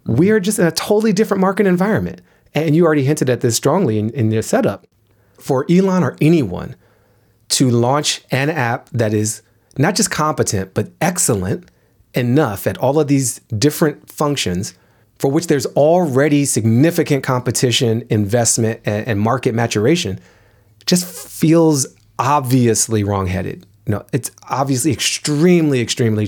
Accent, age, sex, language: American, 30-49, male, English